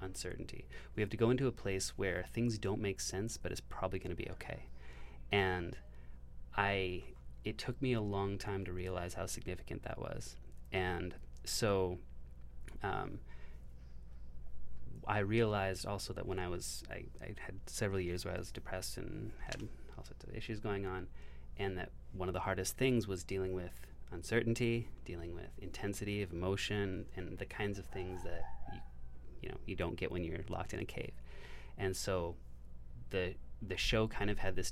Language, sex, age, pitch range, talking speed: English, male, 30-49, 65-100 Hz, 180 wpm